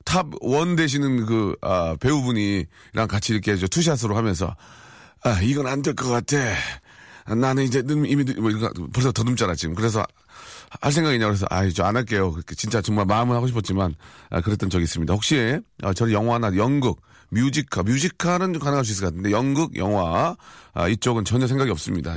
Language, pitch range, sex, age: Korean, 100-140 Hz, male, 40-59